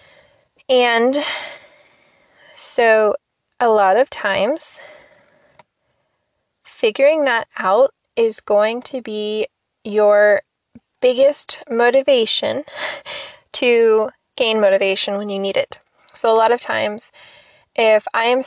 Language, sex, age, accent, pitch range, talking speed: English, female, 20-39, American, 205-265 Hz, 100 wpm